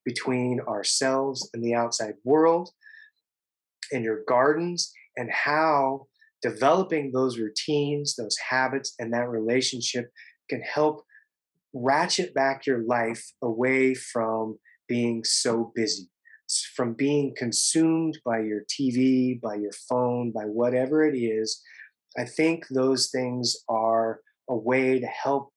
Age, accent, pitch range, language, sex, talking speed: 30-49, American, 120-150 Hz, English, male, 125 wpm